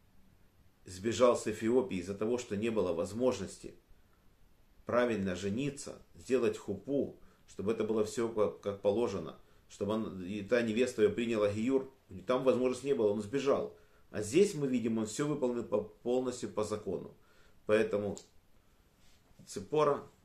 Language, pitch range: Russian, 95-120 Hz